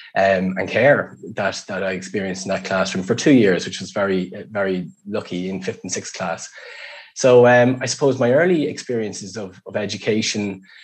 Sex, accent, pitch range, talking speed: male, Irish, 95-115 Hz, 185 wpm